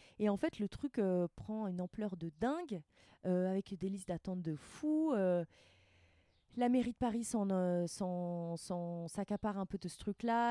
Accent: French